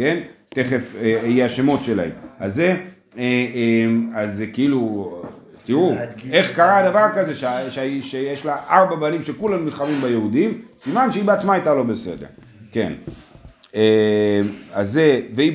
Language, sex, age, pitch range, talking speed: Hebrew, male, 40-59, 115-175 Hz, 125 wpm